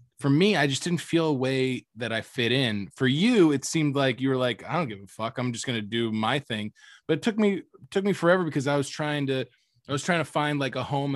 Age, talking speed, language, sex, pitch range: 20-39, 285 wpm, English, male, 120-145 Hz